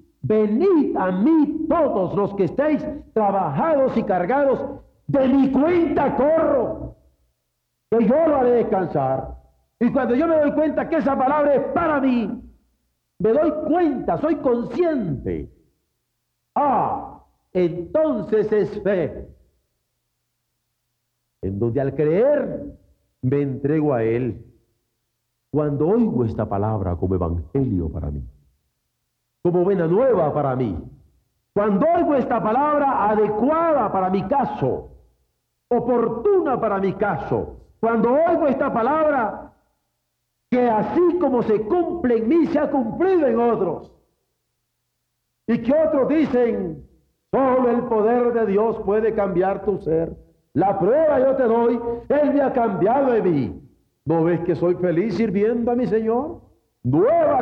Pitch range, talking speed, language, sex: 175-285 Hz, 130 wpm, Spanish, male